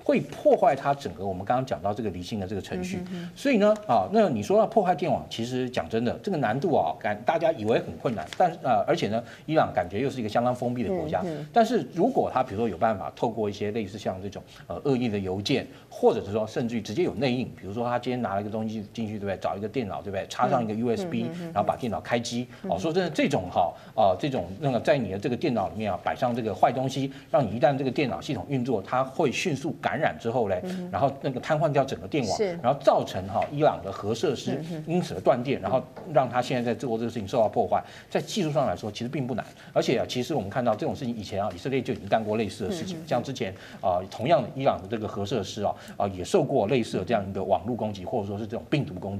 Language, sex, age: Chinese, male, 40-59